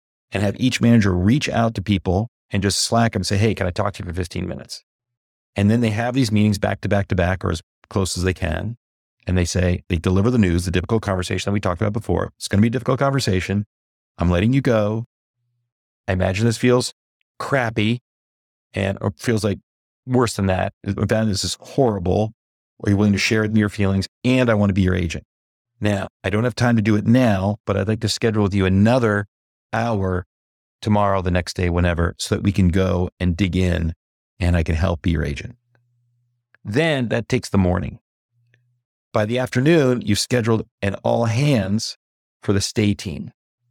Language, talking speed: English, 205 wpm